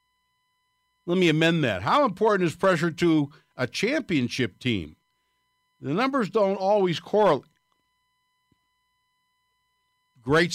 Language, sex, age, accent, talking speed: English, male, 60-79, American, 100 wpm